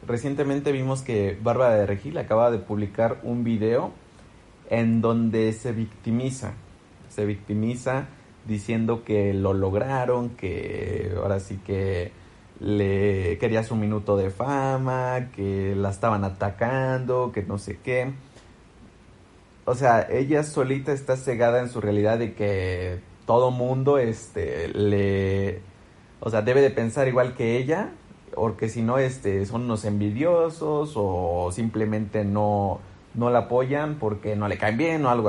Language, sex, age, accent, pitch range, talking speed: Spanish, male, 30-49, Mexican, 100-130 Hz, 140 wpm